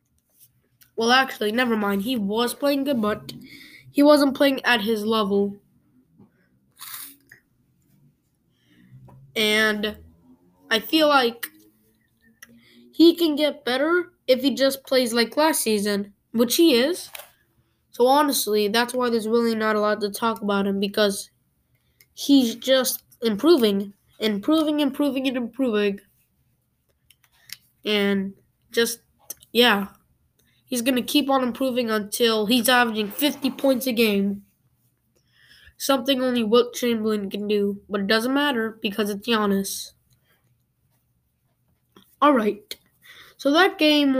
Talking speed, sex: 120 wpm, female